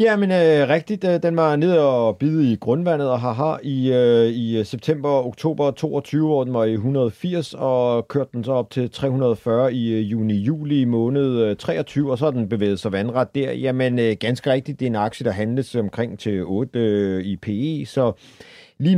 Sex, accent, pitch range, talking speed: male, native, 120-150 Hz, 190 wpm